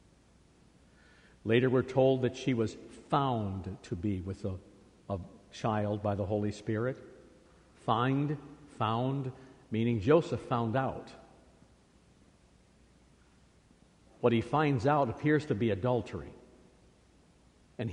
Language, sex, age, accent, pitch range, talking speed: English, male, 60-79, American, 100-130 Hz, 105 wpm